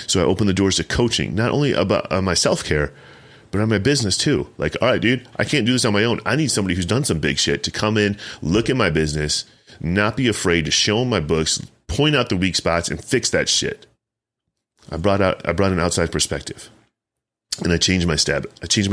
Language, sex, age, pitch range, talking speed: English, male, 30-49, 80-110 Hz, 240 wpm